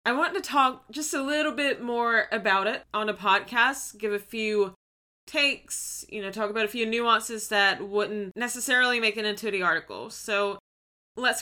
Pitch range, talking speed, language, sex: 200-255 Hz, 185 wpm, English, female